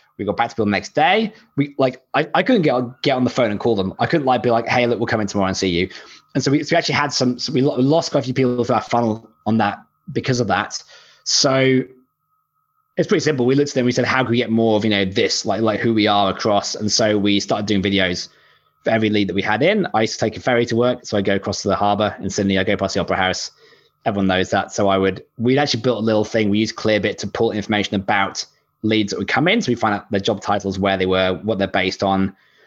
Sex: male